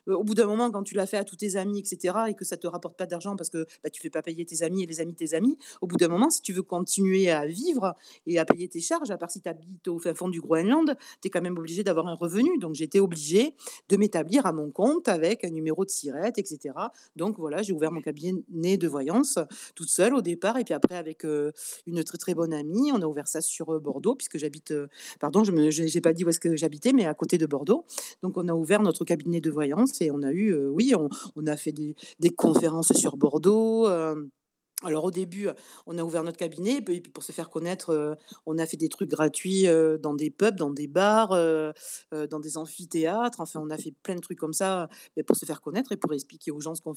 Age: 40-59